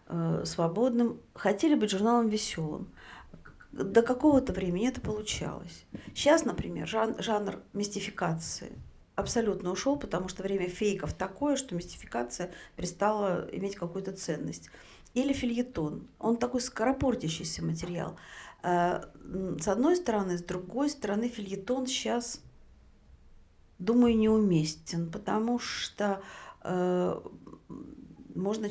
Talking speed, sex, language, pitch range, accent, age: 95 wpm, female, Russian, 170-235 Hz, native, 50-69